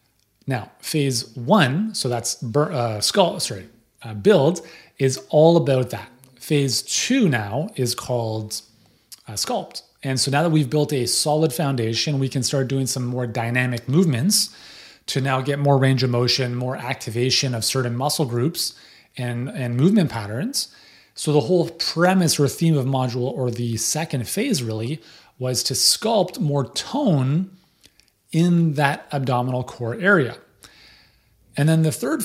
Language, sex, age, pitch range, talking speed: English, male, 30-49, 120-160 Hz, 150 wpm